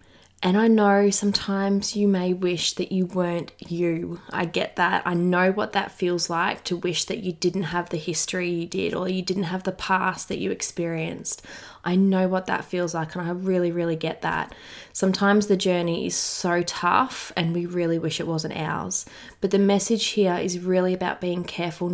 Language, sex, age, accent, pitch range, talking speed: English, female, 20-39, Australian, 170-195 Hz, 200 wpm